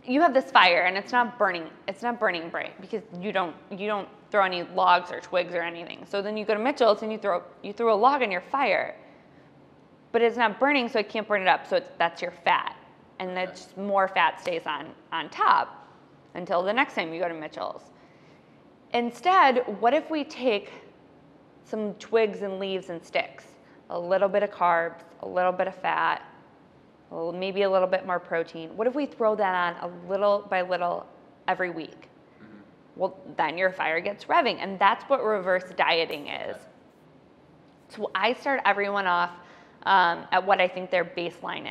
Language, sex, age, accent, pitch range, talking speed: English, female, 20-39, American, 175-215 Hz, 195 wpm